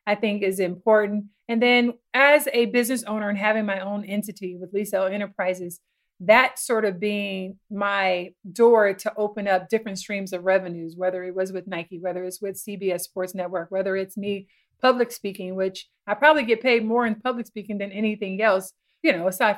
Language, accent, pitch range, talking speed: English, American, 195-230 Hz, 190 wpm